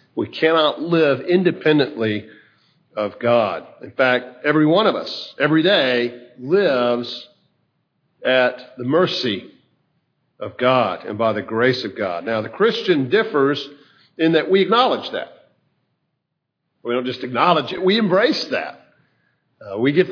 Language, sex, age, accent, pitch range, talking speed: English, male, 50-69, American, 120-155 Hz, 135 wpm